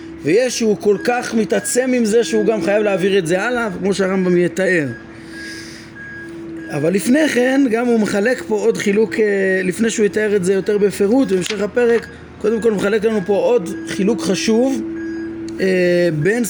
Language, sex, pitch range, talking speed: Hebrew, male, 170-220 Hz, 165 wpm